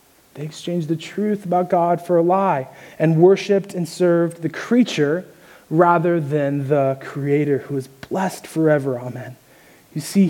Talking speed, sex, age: 150 wpm, male, 20-39